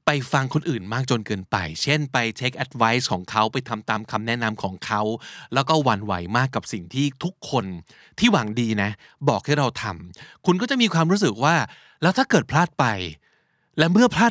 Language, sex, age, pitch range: Thai, male, 20-39, 115-160 Hz